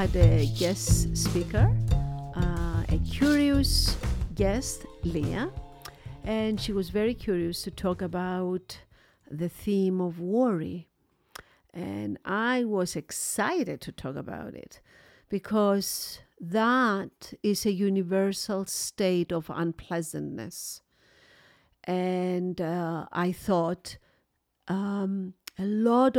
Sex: female